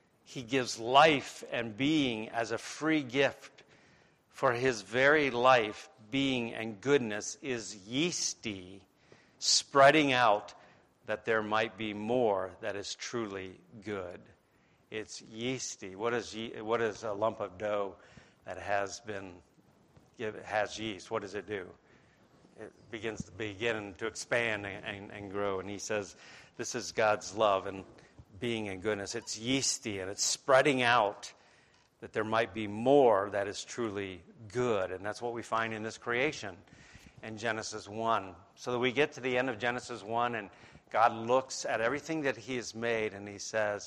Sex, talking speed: male, 160 wpm